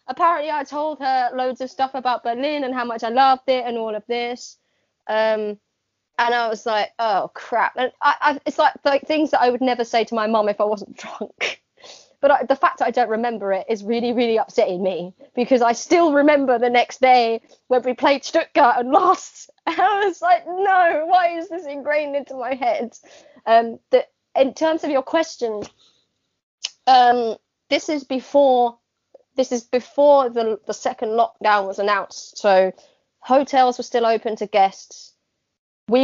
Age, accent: 20-39, British